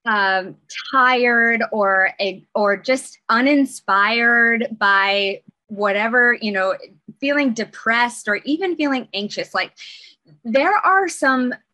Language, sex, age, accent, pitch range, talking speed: English, female, 20-39, American, 200-255 Hz, 100 wpm